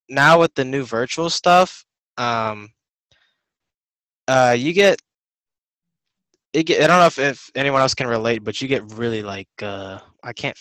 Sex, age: male, 10-29